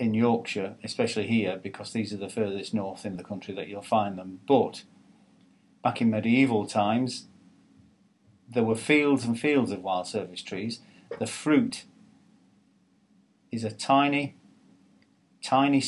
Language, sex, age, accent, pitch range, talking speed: English, male, 40-59, British, 105-130 Hz, 140 wpm